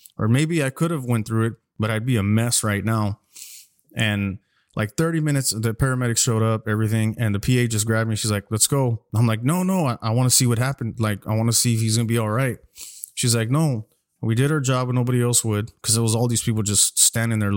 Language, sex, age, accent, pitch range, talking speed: English, male, 20-39, American, 105-120 Hz, 265 wpm